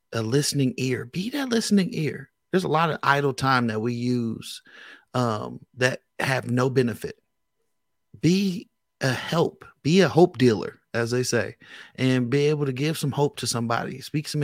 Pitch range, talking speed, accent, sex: 120-155 Hz, 175 wpm, American, male